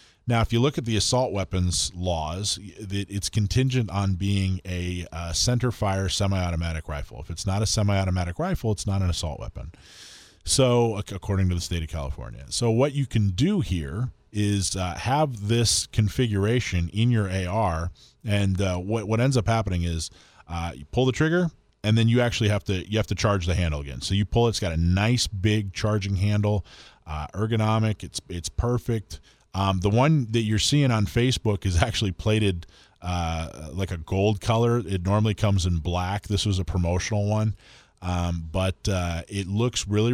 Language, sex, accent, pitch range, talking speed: English, male, American, 90-115 Hz, 185 wpm